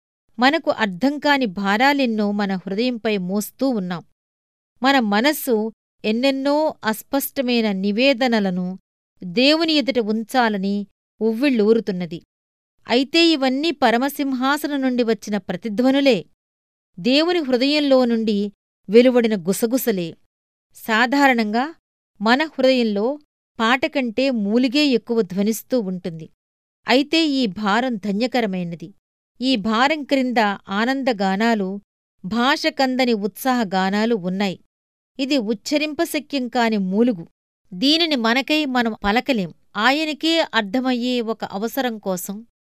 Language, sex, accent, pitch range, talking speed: Telugu, female, native, 200-265 Hz, 85 wpm